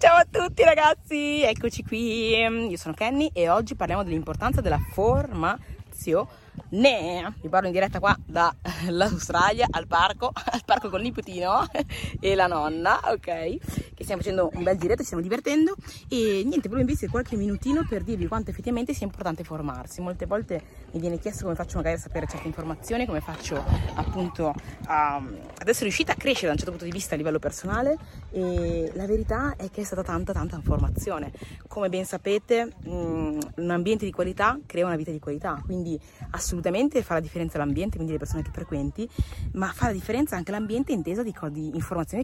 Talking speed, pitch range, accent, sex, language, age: 185 wpm, 160-220 Hz, native, female, Italian, 30-49